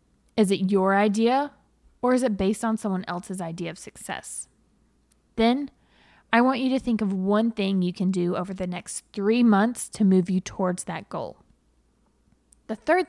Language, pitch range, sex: English, 185-225 Hz, female